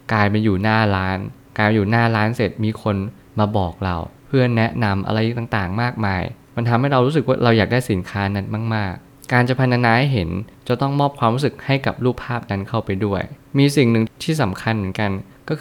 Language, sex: Thai, male